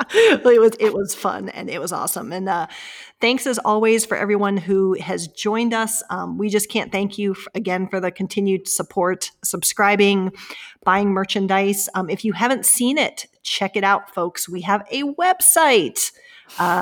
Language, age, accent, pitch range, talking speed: English, 40-59, American, 190-235 Hz, 175 wpm